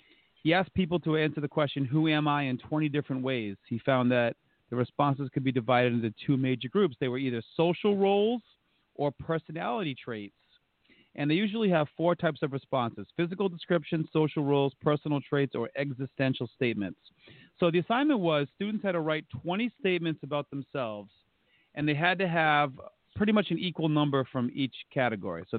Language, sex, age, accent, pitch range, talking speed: English, male, 40-59, American, 120-165 Hz, 180 wpm